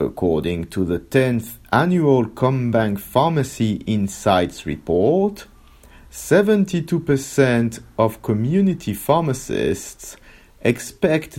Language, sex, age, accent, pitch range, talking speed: English, male, 50-69, French, 90-150 Hz, 75 wpm